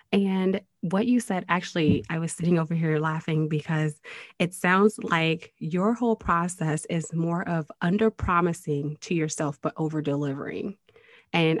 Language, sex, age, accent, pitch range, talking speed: English, female, 20-39, American, 155-200 Hz, 150 wpm